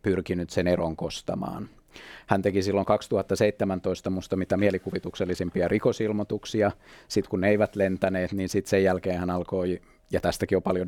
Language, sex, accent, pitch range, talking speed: Finnish, male, native, 90-105 Hz, 150 wpm